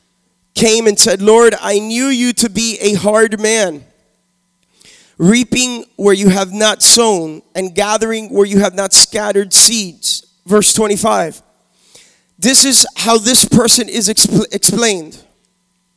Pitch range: 195-245 Hz